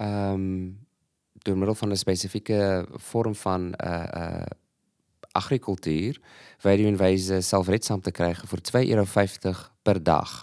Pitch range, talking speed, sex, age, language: 90-110 Hz, 145 wpm, male, 20-39, Dutch